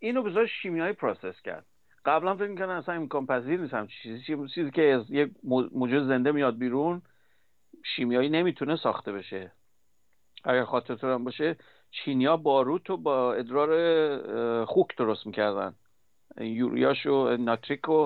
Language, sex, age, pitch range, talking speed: Persian, male, 50-69, 125-165 Hz, 130 wpm